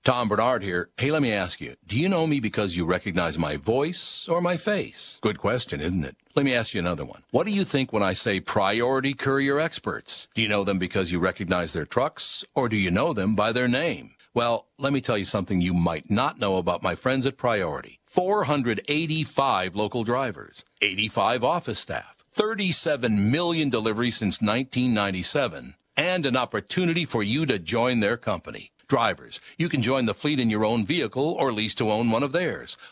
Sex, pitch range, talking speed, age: male, 105-145 Hz, 200 wpm, 60-79